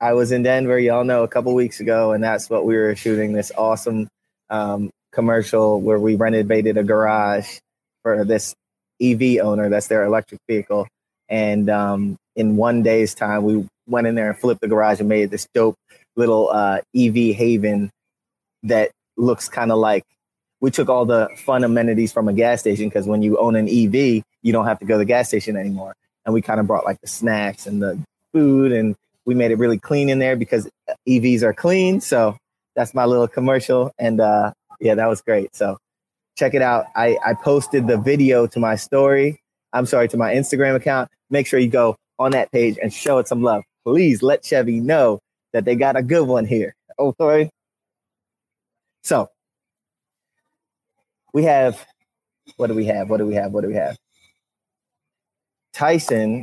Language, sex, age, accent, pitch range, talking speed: English, male, 20-39, American, 105-125 Hz, 190 wpm